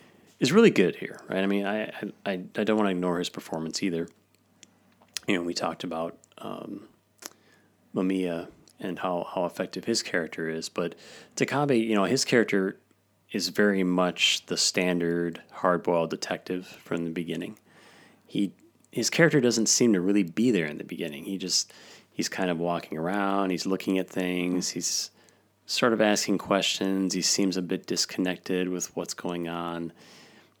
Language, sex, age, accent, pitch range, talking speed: English, male, 30-49, American, 85-100 Hz, 165 wpm